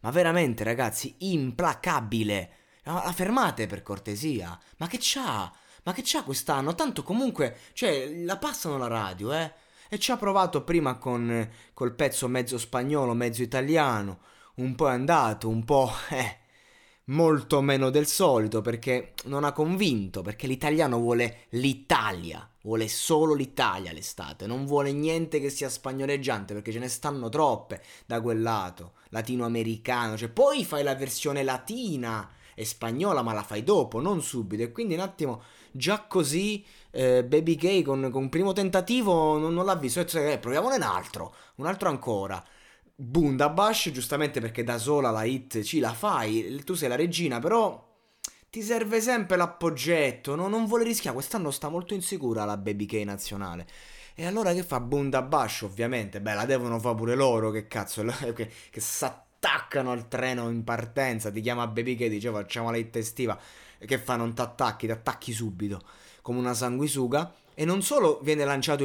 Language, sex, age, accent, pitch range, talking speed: Italian, male, 20-39, native, 115-160 Hz, 165 wpm